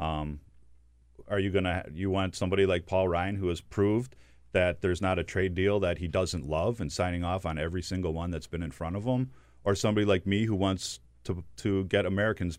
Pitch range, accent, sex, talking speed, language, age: 85-115 Hz, American, male, 225 wpm, English, 40-59